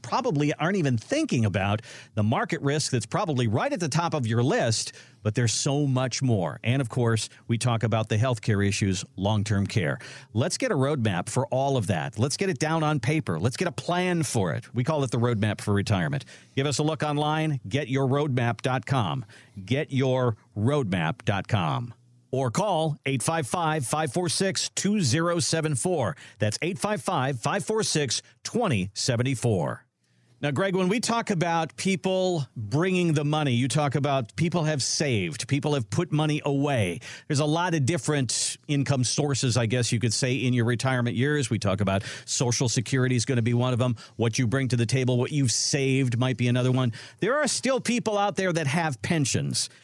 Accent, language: American, English